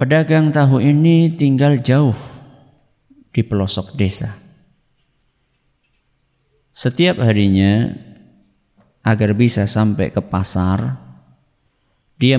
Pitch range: 100-130 Hz